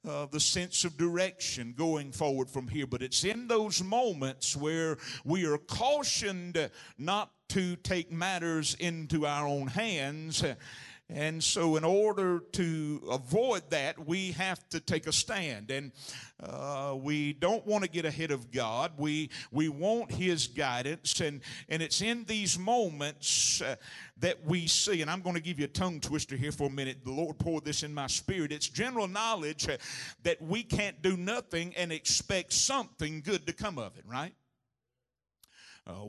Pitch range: 135-180 Hz